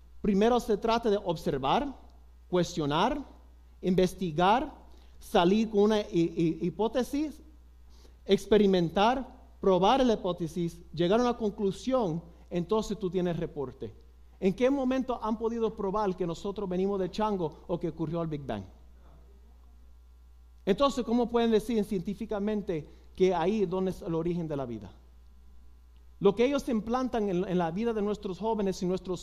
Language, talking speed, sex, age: Spanish, 135 wpm, male, 50-69